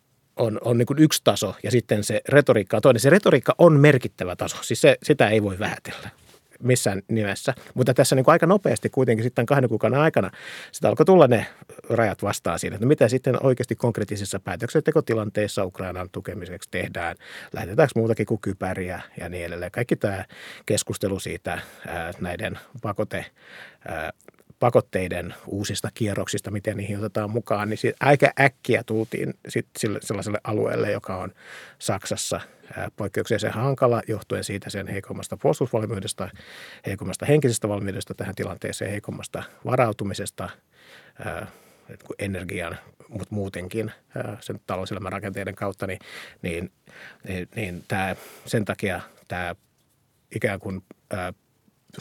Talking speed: 135 wpm